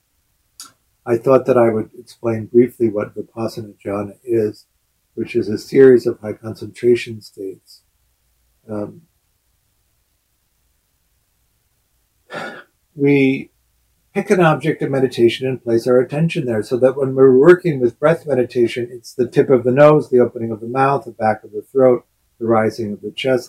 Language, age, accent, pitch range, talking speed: English, 60-79, American, 110-135 Hz, 155 wpm